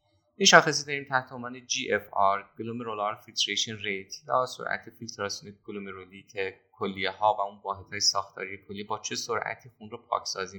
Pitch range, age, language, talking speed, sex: 95-115 Hz, 30-49, Persian, 170 wpm, male